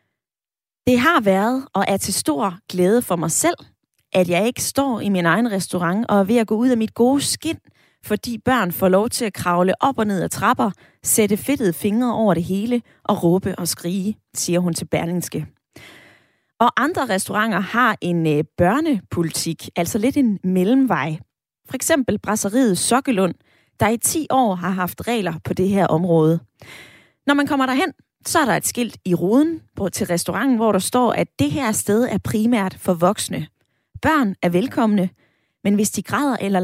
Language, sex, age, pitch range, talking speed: Danish, female, 20-39, 175-240 Hz, 185 wpm